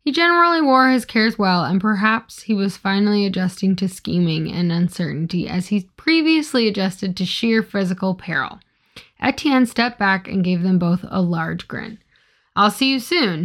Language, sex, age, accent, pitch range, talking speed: English, female, 10-29, American, 190-245 Hz, 170 wpm